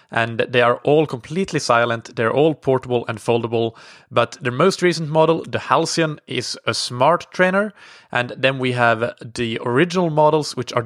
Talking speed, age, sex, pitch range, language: 170 wpm, 20-39, male, 115-145 Hz, English